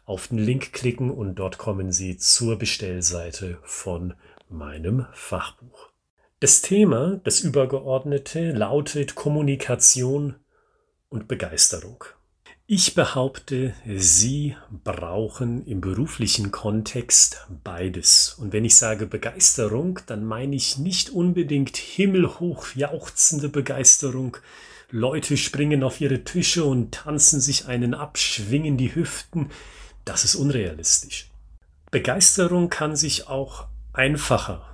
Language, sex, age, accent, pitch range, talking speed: German, male, 40-59, German, 105-145 Hz, 110 wpm